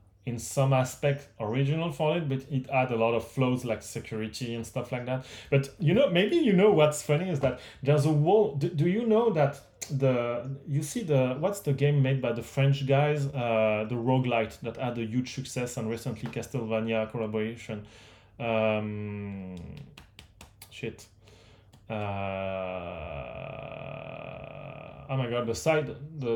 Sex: male